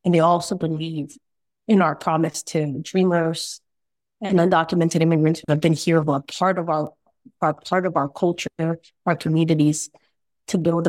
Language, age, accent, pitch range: English, 30-49, American, 160-190 Hz